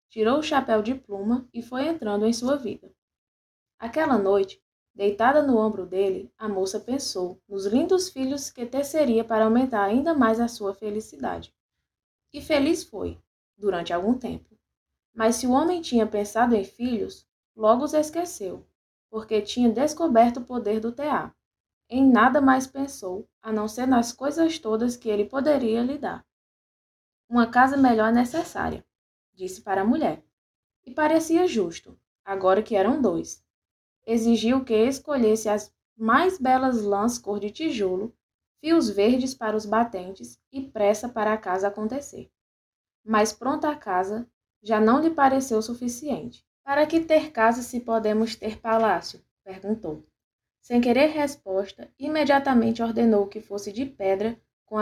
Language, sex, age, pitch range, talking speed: Portuguese, female, 10-29, 210-270 Hz, 150 wpm